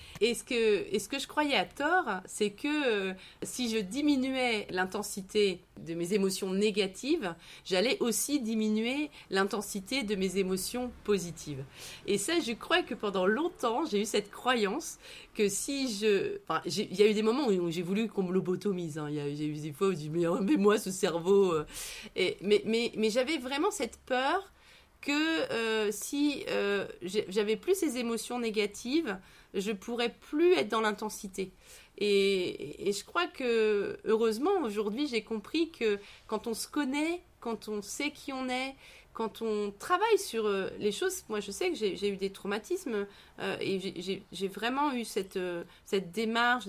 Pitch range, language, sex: 190-250 Hz, French, female